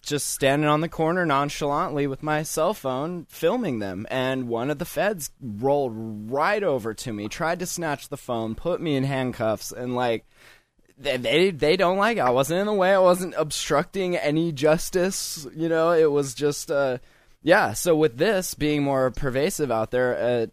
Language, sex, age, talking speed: English, male, 20-39, 190 wpm